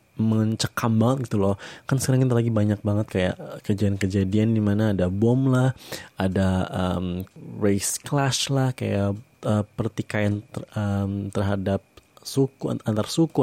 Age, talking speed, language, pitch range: 20-39, 135 wpm, Indonesian, 95-120 Hz